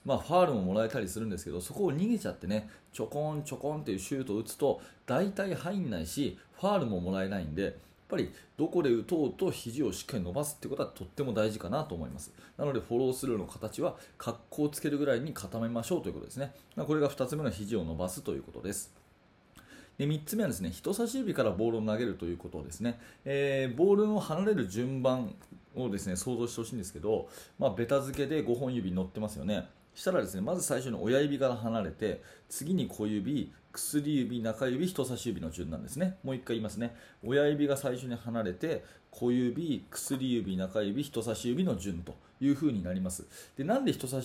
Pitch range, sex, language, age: 105-140 Hz, male, Japanese, 30-49